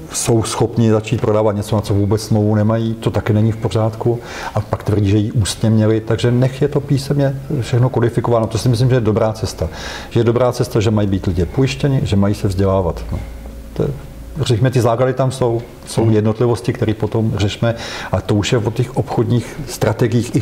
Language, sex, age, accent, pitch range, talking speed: Czech, male, 50-69, native, 110-130 Hz, 210 wpm